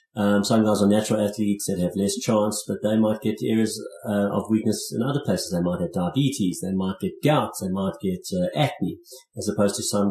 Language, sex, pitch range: English, male, 95-125 Hz